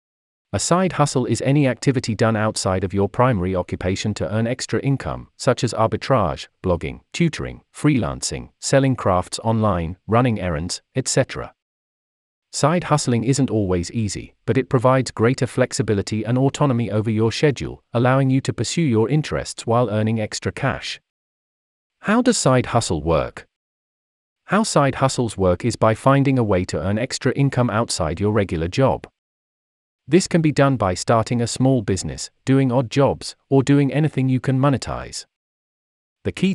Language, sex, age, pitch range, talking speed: English, male, 40-59, 105-135 Hz, 155 wpm